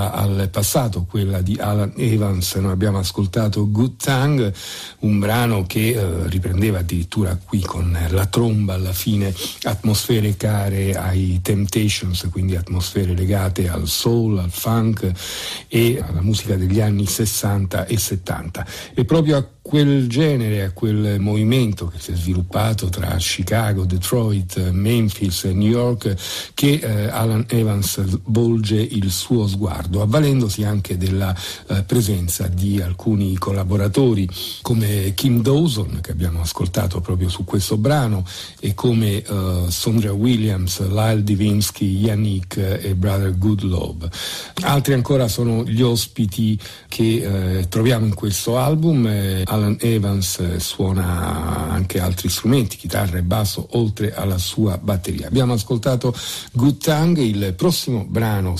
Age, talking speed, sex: 50-69, 135 wpm, male